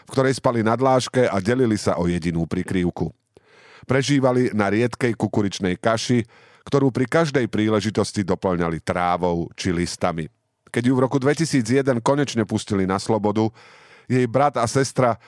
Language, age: Slovak, 40-59